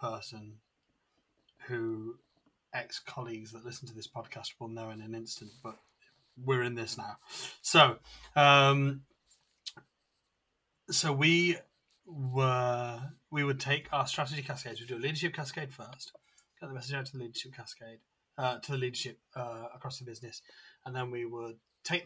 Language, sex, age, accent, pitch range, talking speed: English, male, 30-49, British, 115-135 Hz, 150 wpm